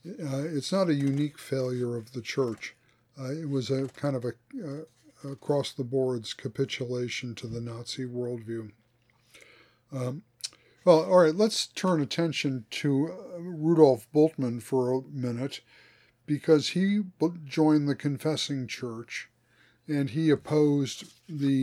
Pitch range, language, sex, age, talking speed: 120-145 Hz, English, male, 60-79, 130 wpm